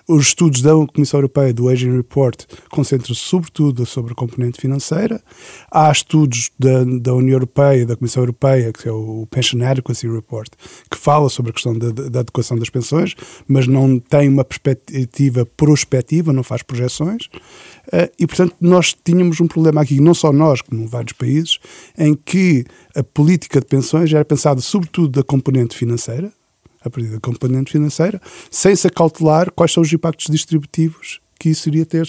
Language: Portuguese